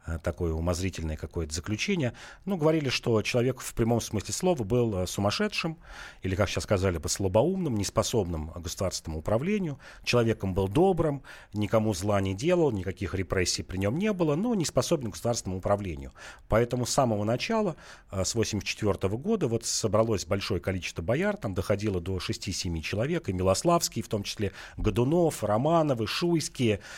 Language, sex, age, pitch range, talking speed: Russian, male, 40-59, 95-140 Hz, 150 wpm